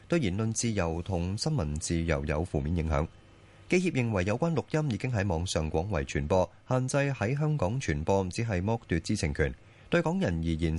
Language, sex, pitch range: Chinese, male, 90-120 Hz